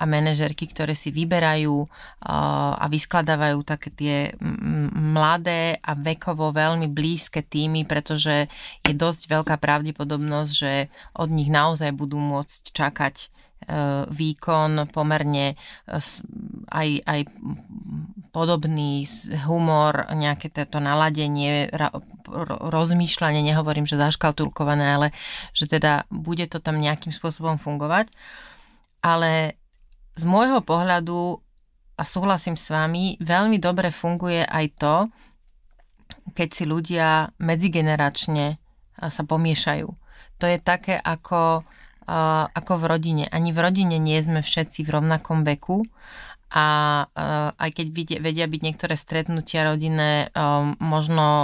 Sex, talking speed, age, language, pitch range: female, 110 wpm, 30-49, Slovak, 150-165 Hz